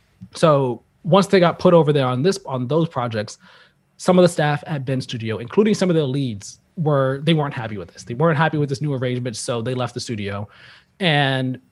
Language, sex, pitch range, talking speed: English, male, 125-165 Hz, 220 wpm